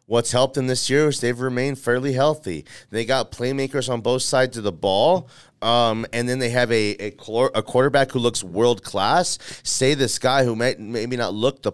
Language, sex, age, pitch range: English, male, 30-49, 105-135 Hz